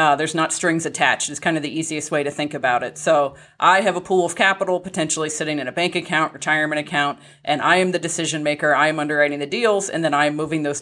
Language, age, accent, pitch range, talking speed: English, 30-49, American, 150-175 Hz, 260 wpm